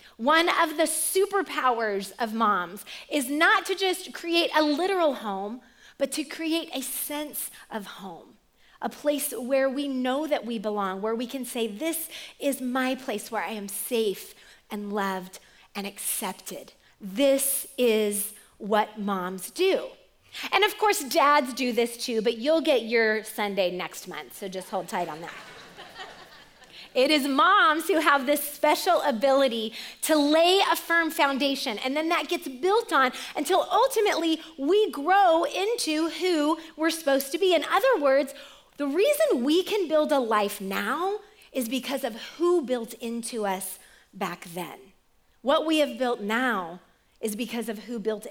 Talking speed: 160 wpm